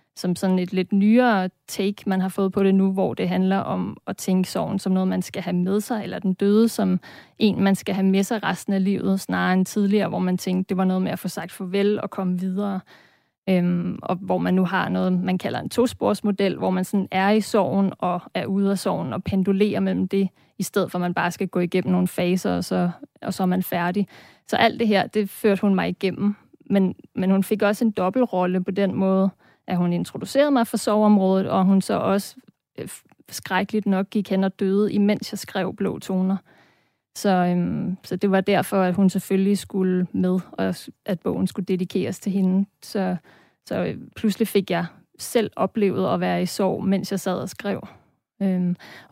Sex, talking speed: female, 215 wpm